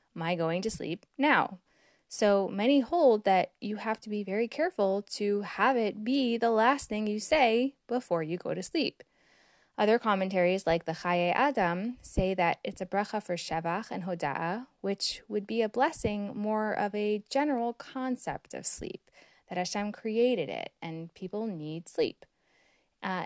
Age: 10-29